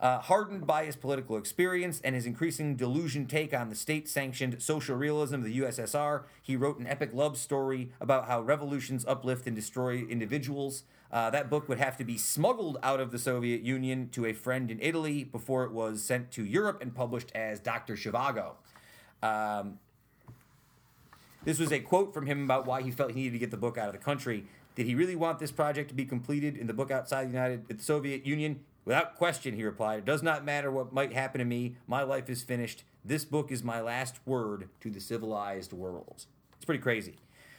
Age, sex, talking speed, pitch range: 30-49, male, 205 wpm, 115-145 Hz